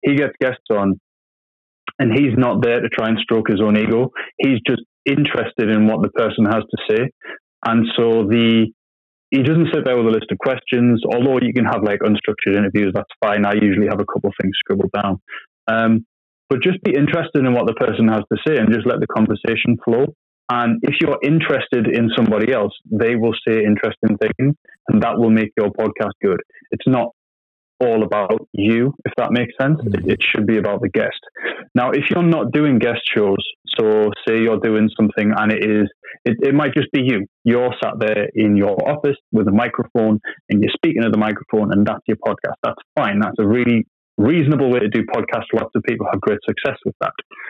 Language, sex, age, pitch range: English, male, 20-39, 105-125 Hz